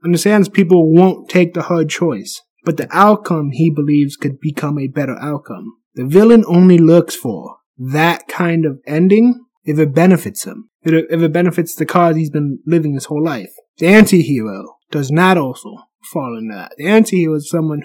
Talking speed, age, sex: 180 wpm, 30-49, male